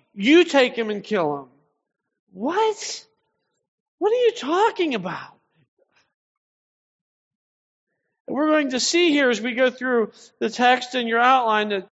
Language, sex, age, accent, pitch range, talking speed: English, male, 40-59, American, 170-245 Hz, 135 wpm